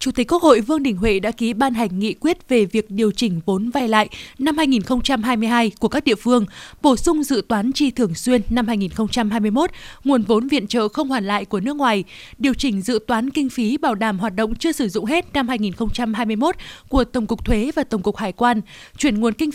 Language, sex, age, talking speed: Vietnamese, female, 20-39, 225 wpm